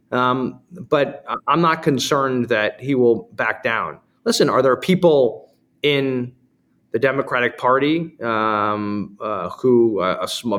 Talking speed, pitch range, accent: 135 wpm, 110-135 Hz, American